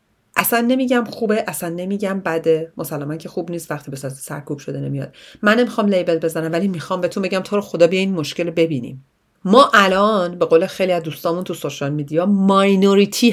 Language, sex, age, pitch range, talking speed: Persian, female, 40-59, 165-235 Hz, 185 wpm